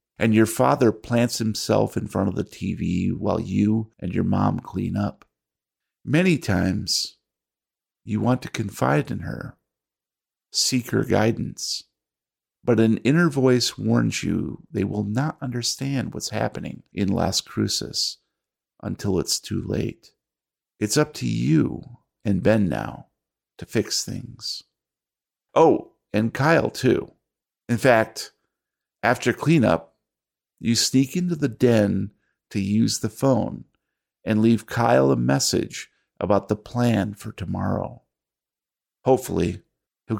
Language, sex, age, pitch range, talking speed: English, male, 50-69, 105-130 Hz, 130 wpm